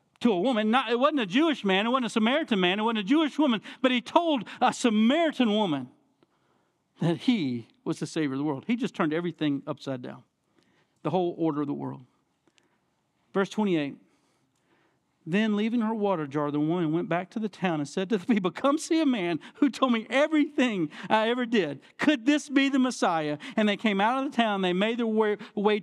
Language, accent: English, American